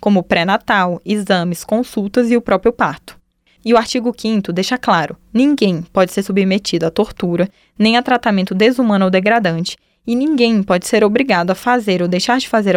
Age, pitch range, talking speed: 10-29, 185-235 Hz, 175 wpm